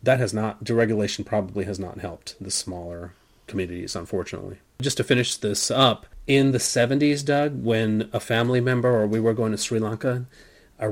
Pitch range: 105-130 Hz